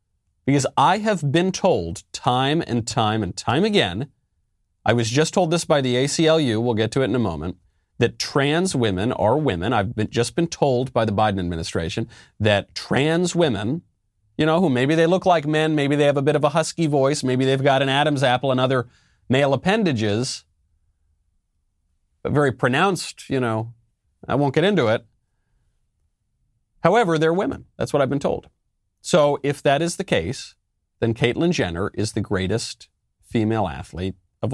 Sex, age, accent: male, 30-49, American